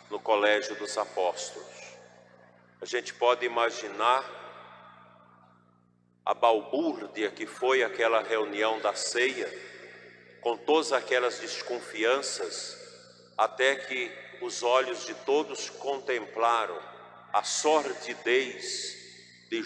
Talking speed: 90 wpm